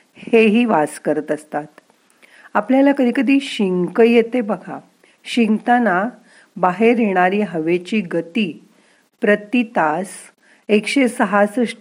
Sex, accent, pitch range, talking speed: female, native, 175-230 Hz, 90 wpm